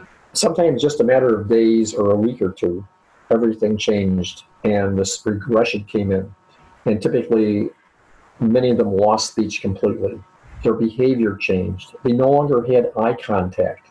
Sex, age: male, 50-69